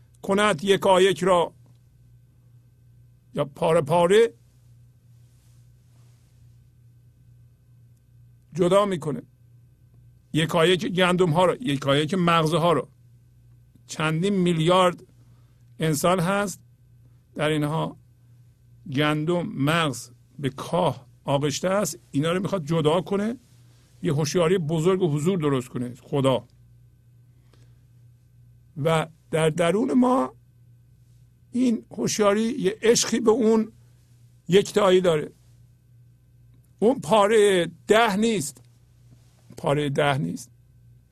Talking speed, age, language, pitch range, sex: 85 wpm, 50-69, Persian, 120-165 Hz, male